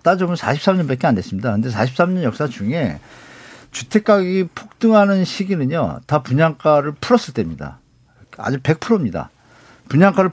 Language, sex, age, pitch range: Korean, male, 50-69, 125-180 Hz